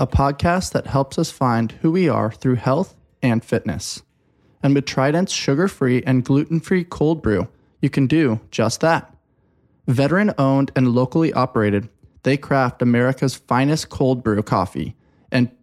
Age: 20-39